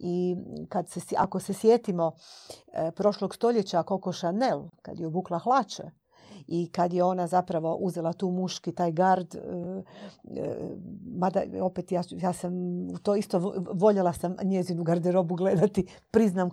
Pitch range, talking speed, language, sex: 170-195 Hz, 125 wpm, Croatian, female